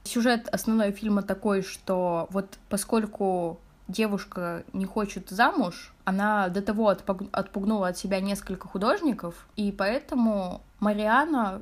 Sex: female